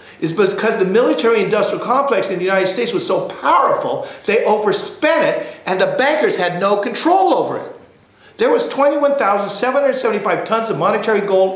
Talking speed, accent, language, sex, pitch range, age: 155 wpm, American, English, male, 195-280 Hz, 50-69